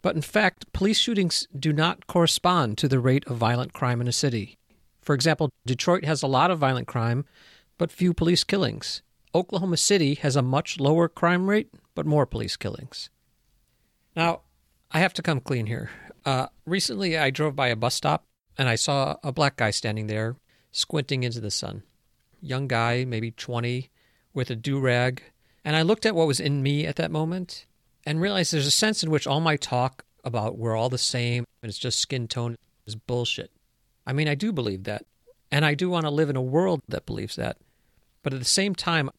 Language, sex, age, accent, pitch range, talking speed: English, male, 50-69, American, 120-160 Hz, 200 wpm